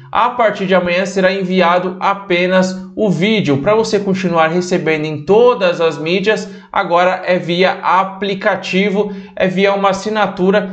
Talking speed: 140 wpm